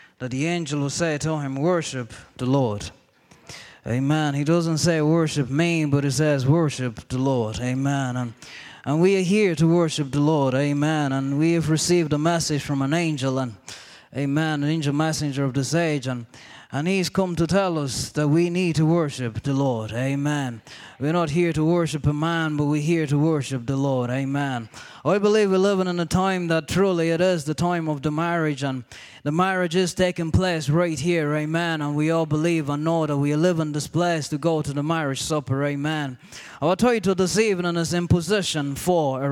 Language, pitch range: English, 145-185 Hz